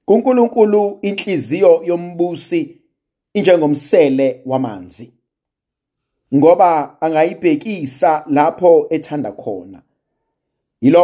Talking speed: 85 wpm